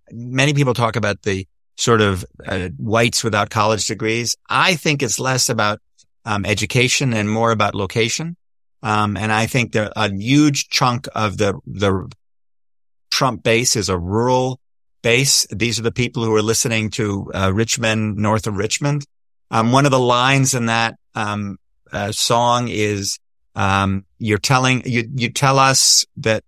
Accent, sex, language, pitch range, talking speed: American, male, English, 105-125 Hz, 165 wpm